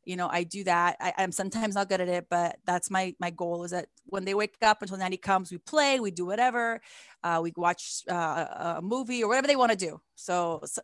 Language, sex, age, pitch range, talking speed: English, female, 30-49, 175-205 Hz, 245 wpm